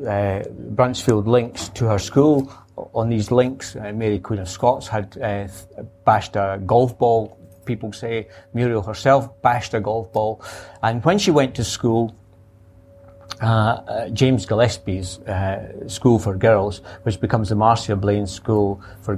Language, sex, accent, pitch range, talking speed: English, male, British, 100-130 Hz, 155 wpm